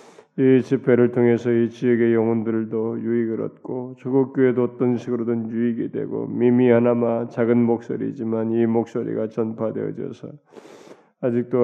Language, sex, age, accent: Korean, male, 20-39, native